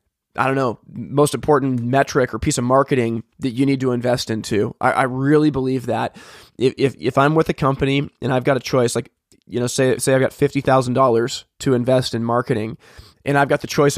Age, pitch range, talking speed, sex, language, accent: 20-39, 125-150 Hz, 225 wpm, male, English, American